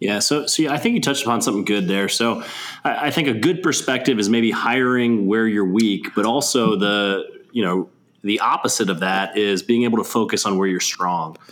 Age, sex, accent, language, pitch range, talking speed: 20-39, male, American, English, 95-120 Hz, 225 wpm